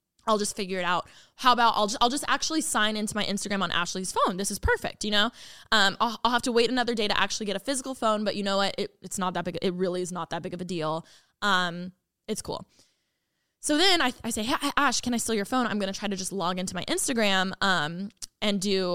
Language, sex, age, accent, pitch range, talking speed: English, female, 10-29, American, 190-245 Hz, 265 wpm